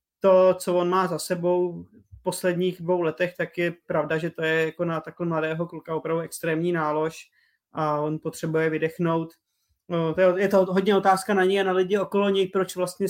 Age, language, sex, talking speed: 20-39, Czech, male, 190 wpm